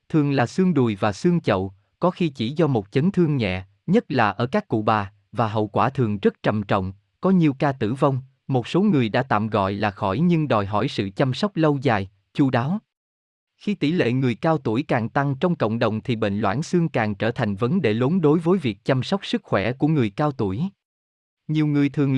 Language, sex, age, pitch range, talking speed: Vietnamese, male, 20-39, 110-155 Hz, 235 wpm